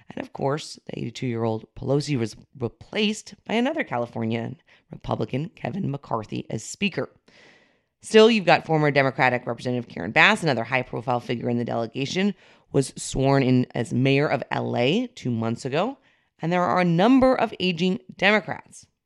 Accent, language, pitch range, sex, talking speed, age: American, English, 125-180 Hz, female, 150 wpm, 30-49